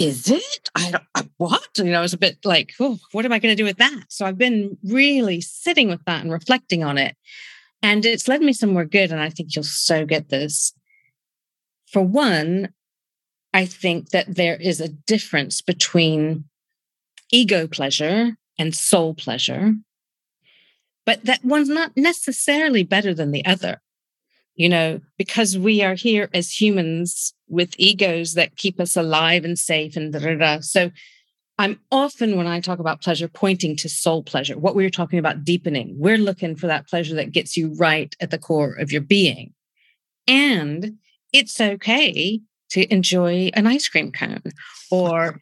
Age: 40-59